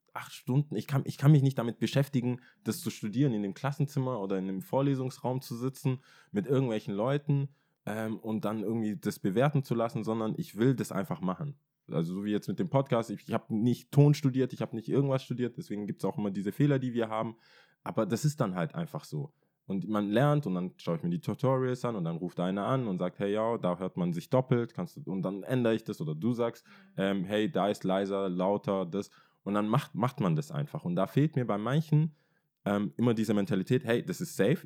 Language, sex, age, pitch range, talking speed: German, male, 20-39, 105-145 Hz, 235 wpm